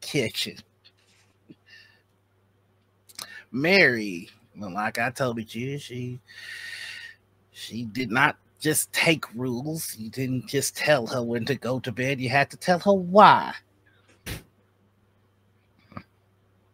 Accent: American